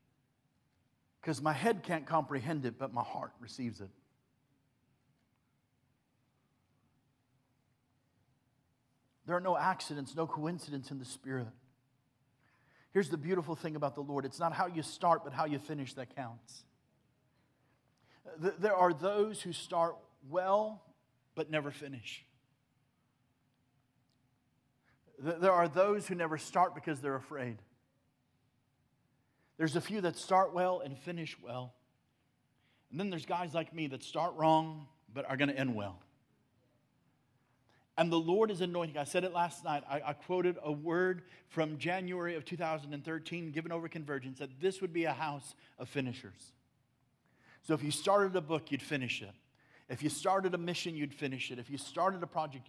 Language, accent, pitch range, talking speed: English, American, 130-165 Hz, 150 wpm